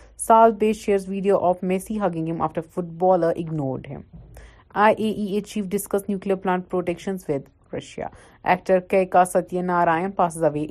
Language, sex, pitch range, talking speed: Urdu, female, 165-195 Hz, 140 wpm